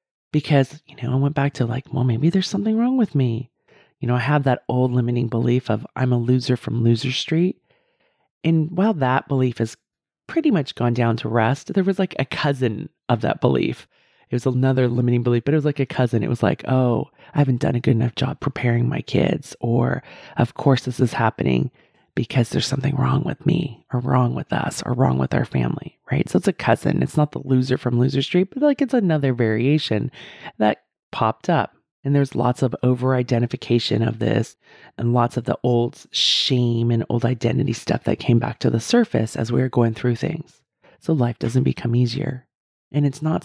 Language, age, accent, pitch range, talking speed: English, 30-49, American, 120-150 Hz, 210 wpm